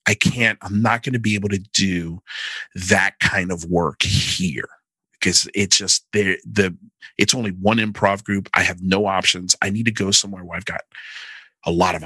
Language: English